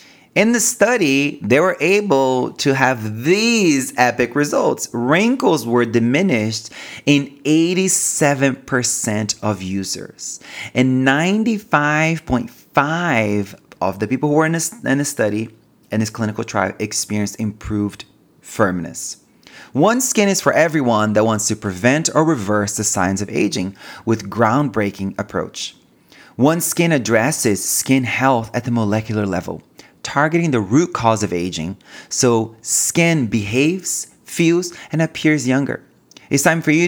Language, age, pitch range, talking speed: English, 30-49, 105-145 Hz, 130 wpm